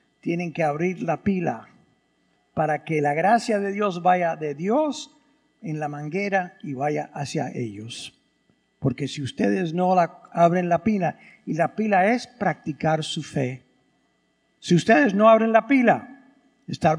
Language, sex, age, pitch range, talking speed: English, male, 60-79, 165-240 Hz, 150 wpm